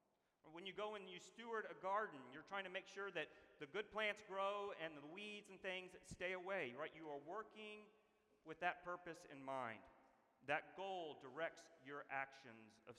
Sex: male